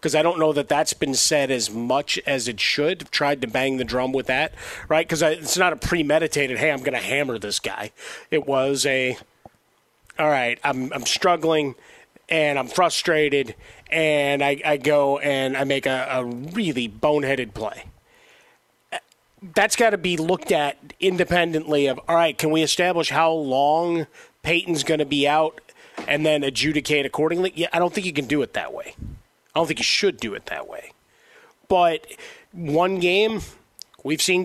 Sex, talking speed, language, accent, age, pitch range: male, 185 wpm, English, American, 30-49, 140-170 Hz